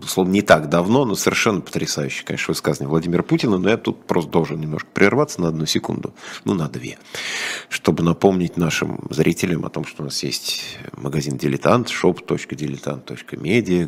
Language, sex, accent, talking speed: Russian, male, native, 160 wpm